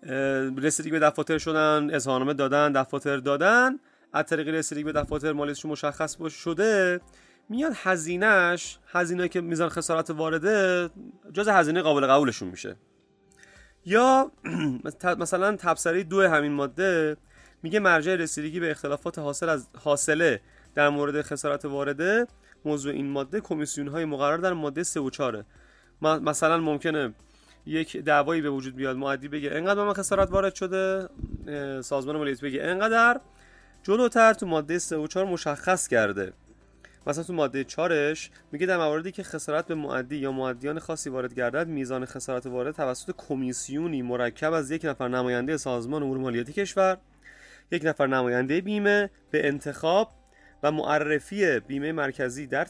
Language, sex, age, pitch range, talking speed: Persian, male, 30-49, 140-175 Hz, 140 wpm